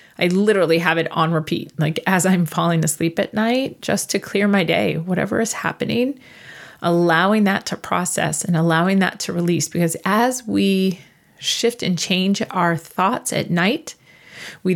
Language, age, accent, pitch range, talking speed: English, 30-49, American, 170-205 Hz, 165 wpm